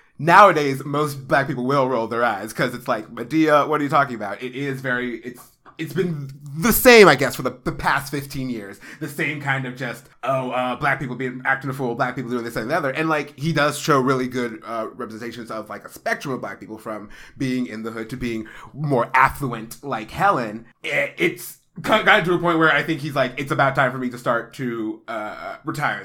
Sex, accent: male, American